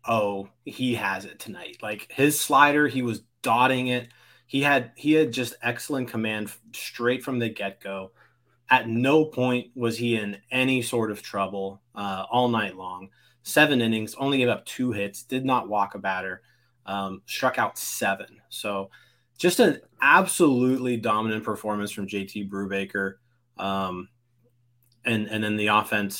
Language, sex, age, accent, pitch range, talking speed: English, male, 20-39, American, 105-125 Hz, 155 wpm